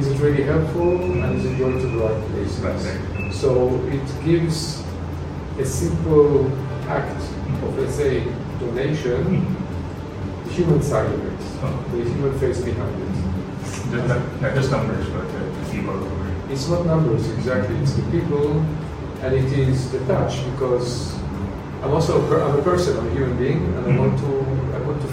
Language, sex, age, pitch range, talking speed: Filipino, male, 40-59, 105-140 Hz, 160 wpm